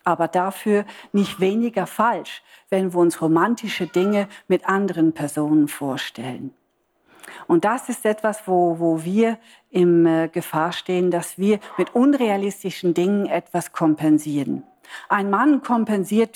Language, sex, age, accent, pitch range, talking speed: German, female, 50-69, German, 175-230 Hz, 130 wpm